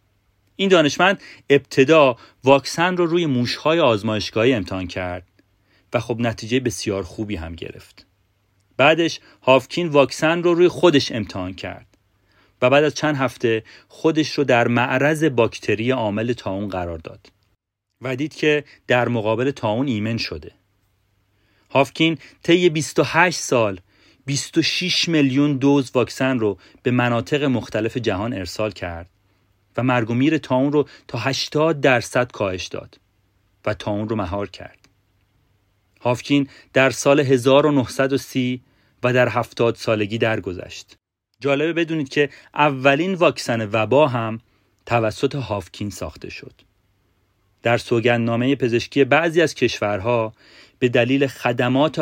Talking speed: 125 wpm